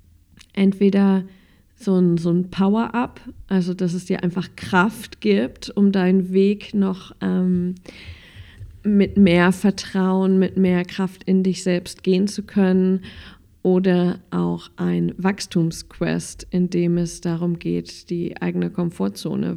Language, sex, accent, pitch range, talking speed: German, female, German, 165-195 Hz, 130 wpm